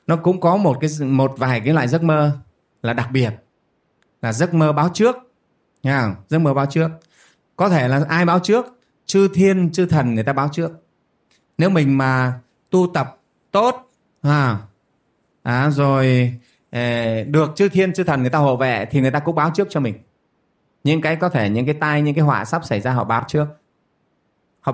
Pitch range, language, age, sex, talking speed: 135-175 Hz, Vietnamese, 20-39, male, 200 wpm